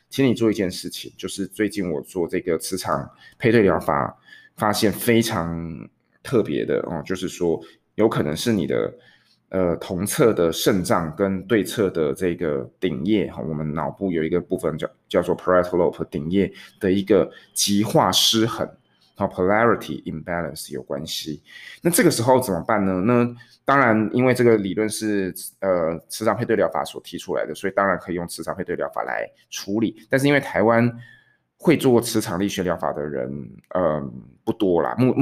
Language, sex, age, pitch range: Chinese, male, 20-39, 90-115 Hz